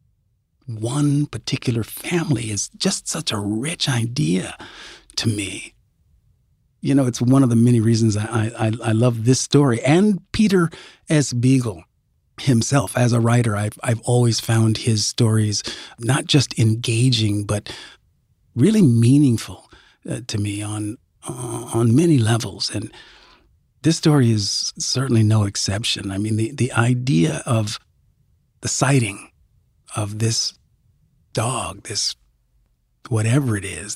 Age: 40-59